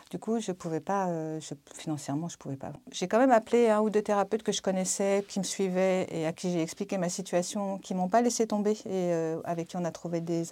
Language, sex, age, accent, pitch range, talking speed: French, female, 50-69, French, 175-225 Hz, 250 wpm